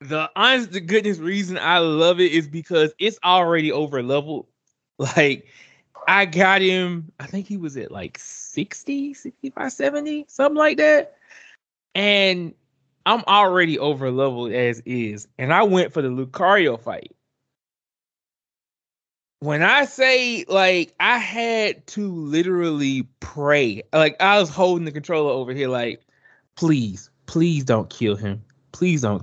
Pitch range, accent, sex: 135-200 Hz, American, male